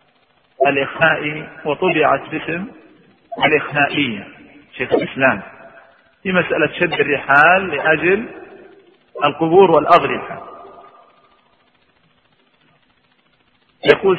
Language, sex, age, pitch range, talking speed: Arabic, male, 40-59, 140-180 Hz, 60 wpm